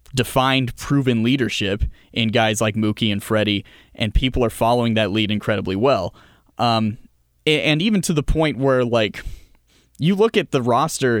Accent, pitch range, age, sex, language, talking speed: American, 115-150 Hz, 20-39, male, English, 160 wpm